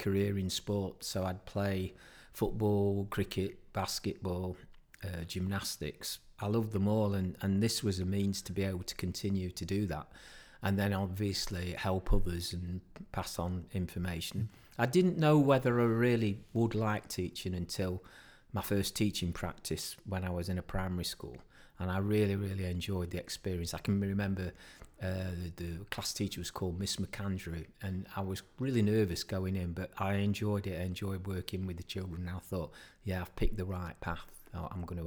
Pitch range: 90-100 Hz